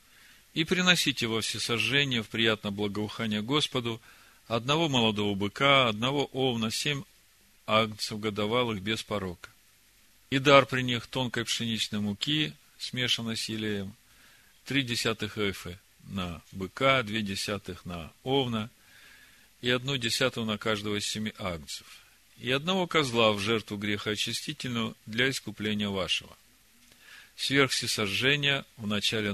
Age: 40-59